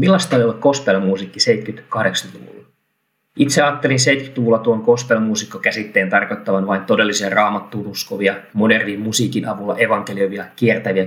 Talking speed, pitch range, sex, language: 110 wpm, 105-125 Hz, male, Finnish